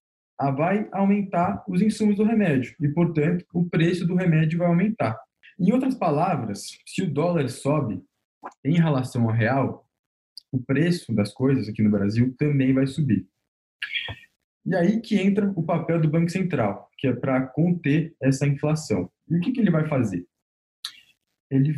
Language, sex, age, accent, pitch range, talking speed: Portuguese, male, 20-39, Brazilian, 125-170 Hz, 160 wpm